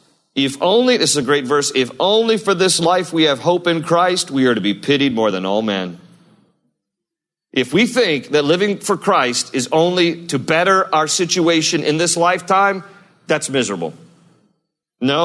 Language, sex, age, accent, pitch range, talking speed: English, male, 40-59, American, 135-180 Hz, 175 wpm